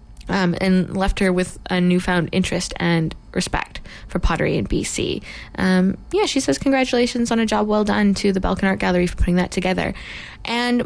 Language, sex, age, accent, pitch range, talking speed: English, female, 20-39, American, 175-210 Hz, 190 wpm